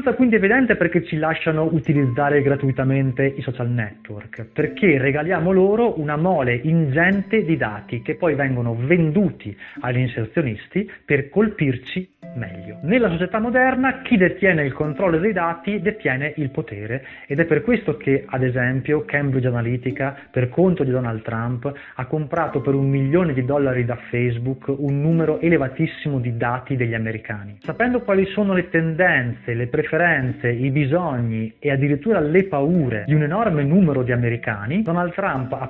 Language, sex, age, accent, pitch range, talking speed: Italian, male, 30-49, native, 130-175 Hz, 155 wpm